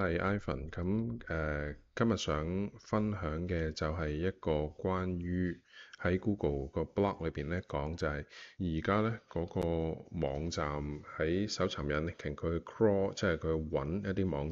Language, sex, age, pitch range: Chinese, male, 20-39, 75-95 Hz